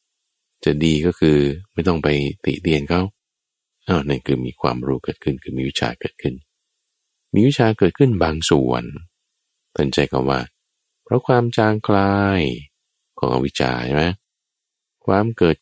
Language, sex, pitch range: Thai, male, 75-110 Hz